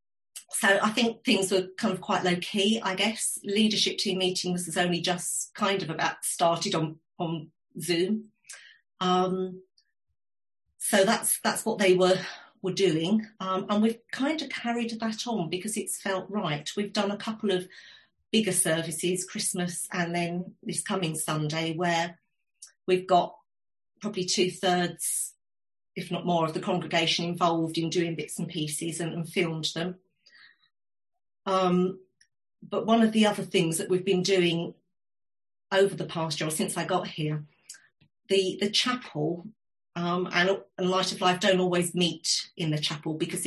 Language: English